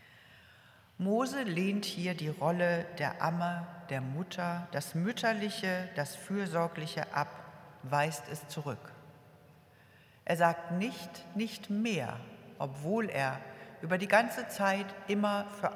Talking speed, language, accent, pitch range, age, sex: 115 wpm, German, German, 145-190 Hz, 60-79, female